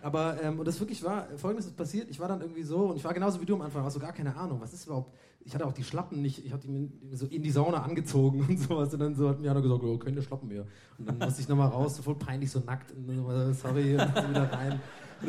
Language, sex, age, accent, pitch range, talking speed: German, male, 30-49, German, 135-165 Hz, 300 wpm